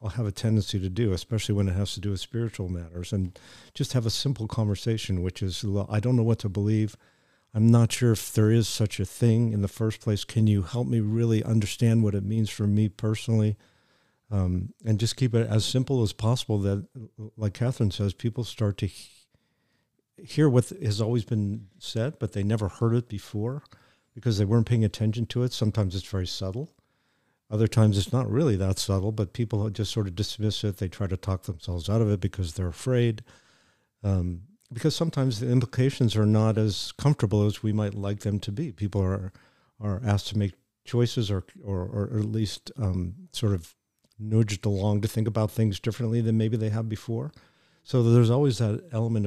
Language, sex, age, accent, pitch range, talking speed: English, male, 50-69, American, 100-115 Hz, 200 wpm